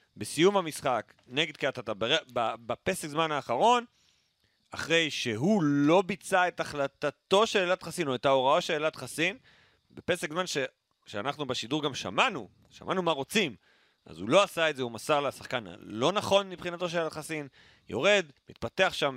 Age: 40-59